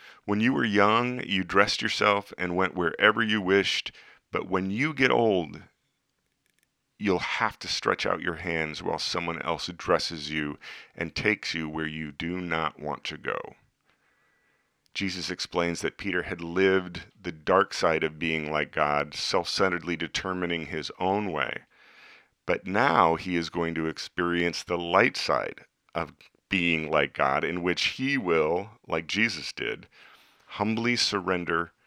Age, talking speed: 40-59, 150 wpm